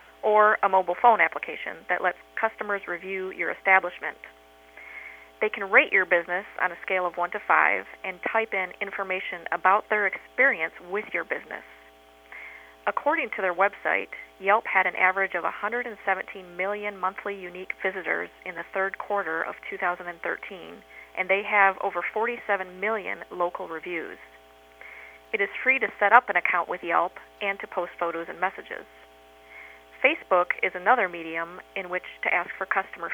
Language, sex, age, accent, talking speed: English, female, 40-59, American, 160 wpm